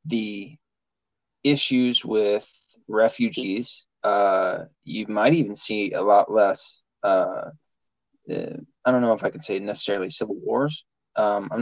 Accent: American